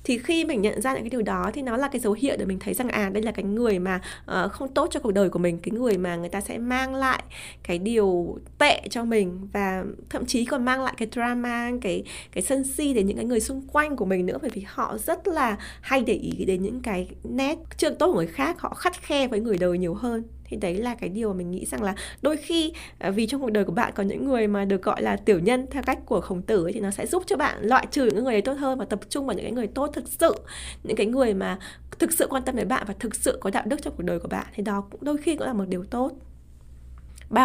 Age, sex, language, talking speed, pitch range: 20-39, female, Vietnamese, 285 wpm, 195-265 Hz